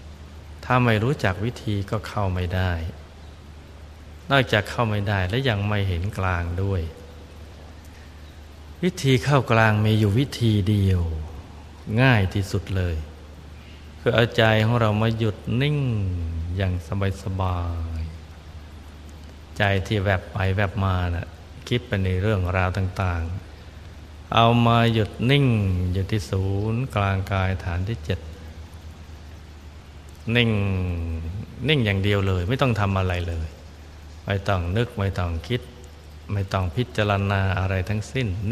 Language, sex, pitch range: Thai, male, 80-105 Hz